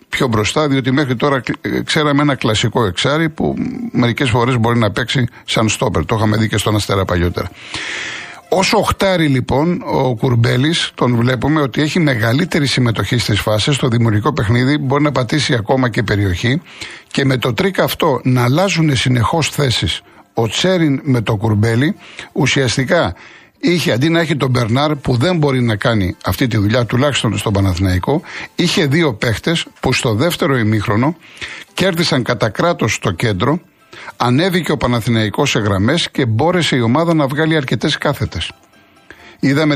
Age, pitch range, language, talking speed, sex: 60-79, 115-155 Hz, Greek, 155 wpm, male